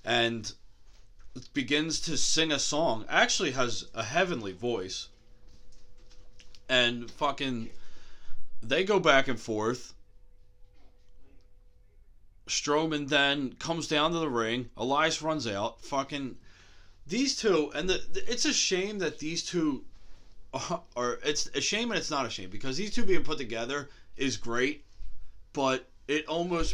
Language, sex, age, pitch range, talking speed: English, male, 30-49, 100-160 Hz, 135 wpm